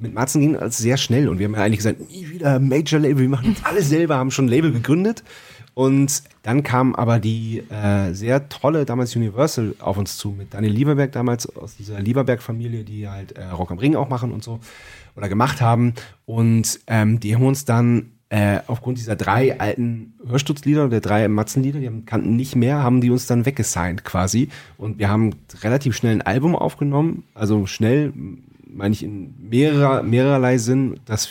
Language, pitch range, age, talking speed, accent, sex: German, 110-135 Hz, 30-49, 190 wpm, German, male